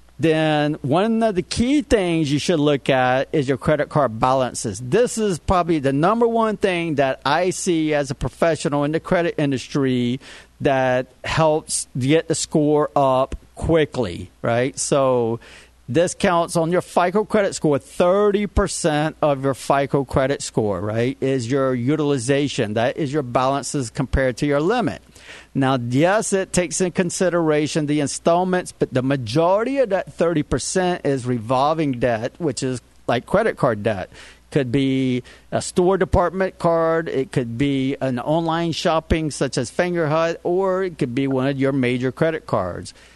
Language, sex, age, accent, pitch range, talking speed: English, male, 40-59, American, 130-170 Hz, 160 wpm